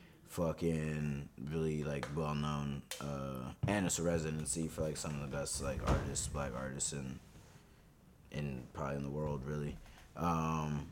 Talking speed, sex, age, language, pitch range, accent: 150 wpm, male, 20-39, English, 75-90 Hz, American